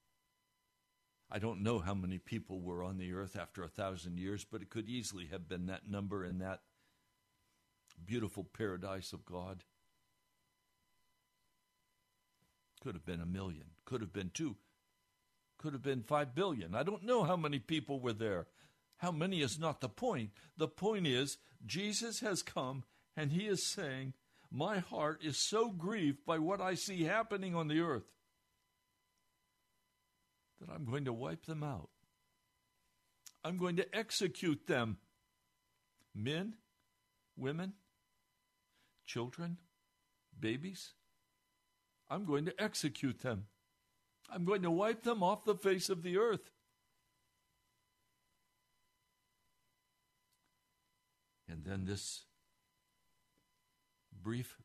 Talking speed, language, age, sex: 125 wpm, English, 60-79, male